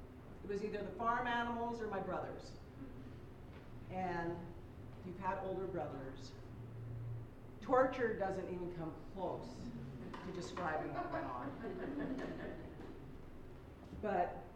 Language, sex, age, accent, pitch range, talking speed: English, female, 50-69, American, 165-230 Hz, 105 wpm